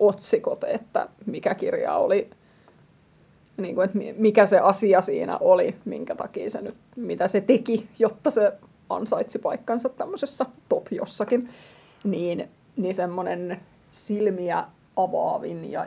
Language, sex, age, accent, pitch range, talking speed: English, female, 30-49, Finnish, 185-255 Hz, 125 wpm